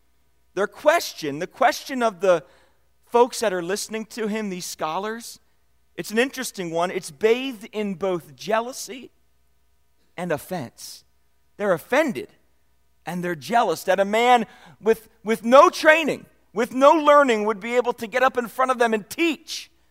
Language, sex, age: English, male, 40-59